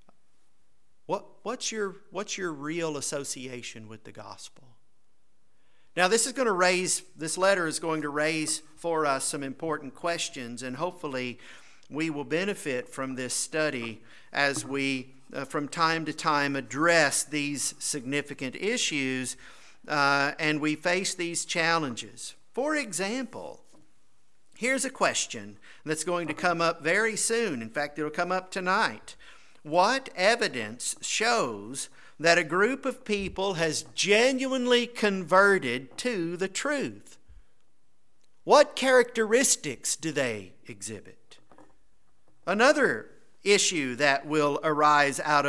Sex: male